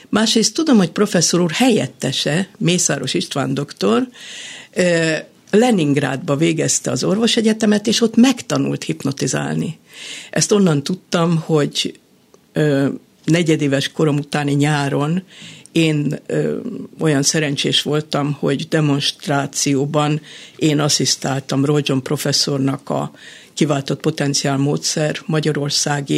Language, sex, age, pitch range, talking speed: Hungarian, female, 60-79, 140-175 Hz, 90 wpm